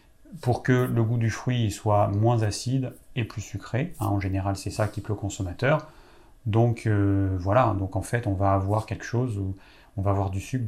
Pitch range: 100-120 Hz